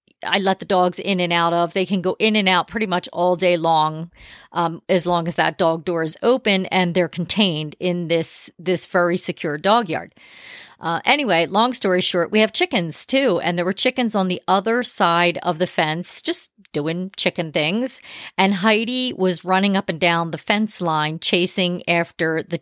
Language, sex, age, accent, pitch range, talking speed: English, female, 40-59, American, 170-200 Hz, 200 wpm